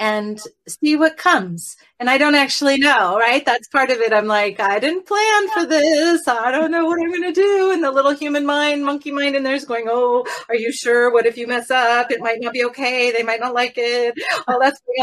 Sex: female